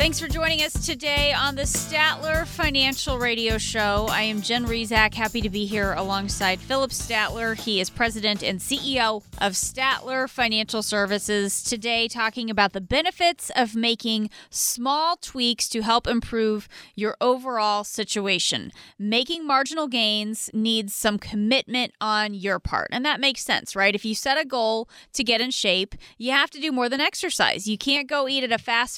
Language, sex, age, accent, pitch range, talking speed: English, female, 20-39, American, 215-265 Hz, 170 wpm